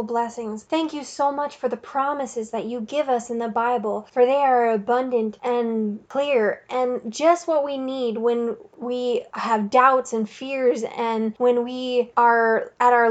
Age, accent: 10-29, American